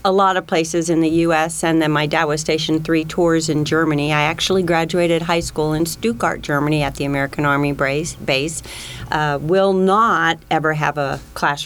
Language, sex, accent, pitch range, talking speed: English, female, American, 150-180 Hz, 185 wpm